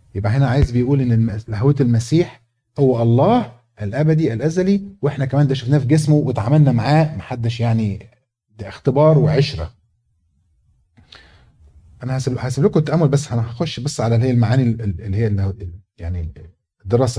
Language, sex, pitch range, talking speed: Arabic, male, 105-140 Hz, 135 wpm